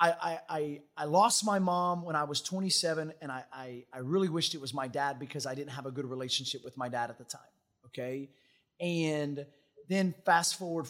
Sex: male